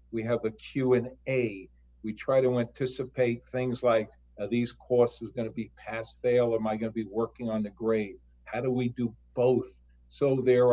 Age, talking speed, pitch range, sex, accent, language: 50-69, 195 wpm, 100-125 Hz, male, American, English